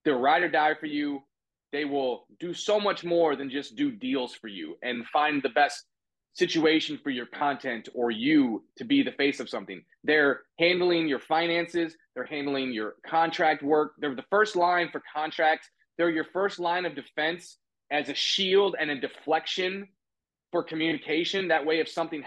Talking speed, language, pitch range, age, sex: 185 wpm, English, 140-175 Hz, 30-49, male